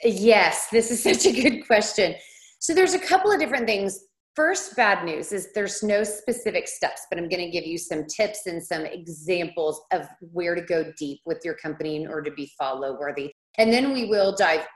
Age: 30-49